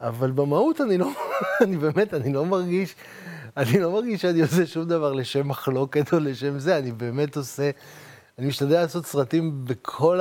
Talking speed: 170 wpm